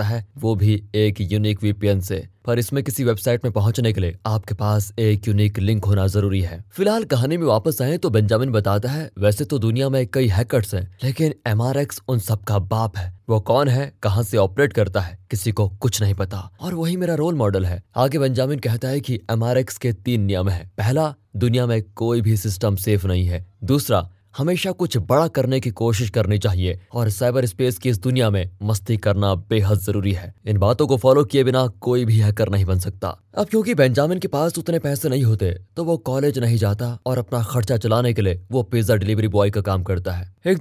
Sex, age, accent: male, 20-39, native